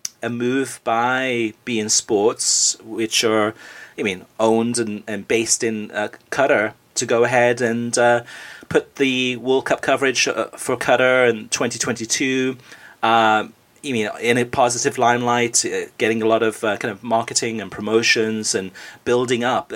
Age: 30-49